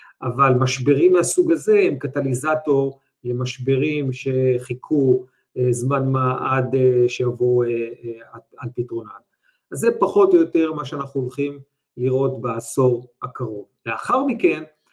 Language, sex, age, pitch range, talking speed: Hebrew, male, 50-69, 125-150 Hz, 110 wpm